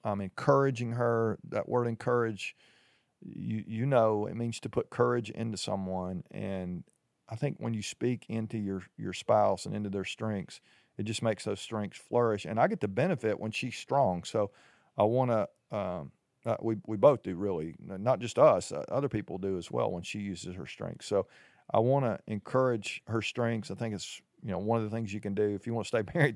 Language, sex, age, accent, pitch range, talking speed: English, male, 40-59, American, 105-120 Hz, 215 wpm